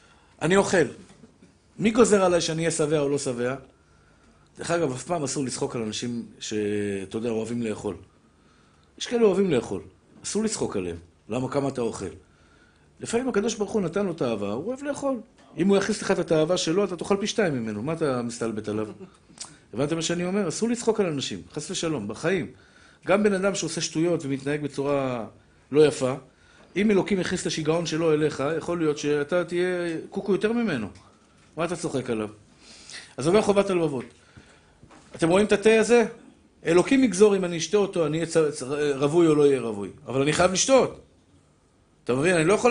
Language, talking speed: Hebrew, 180 wpm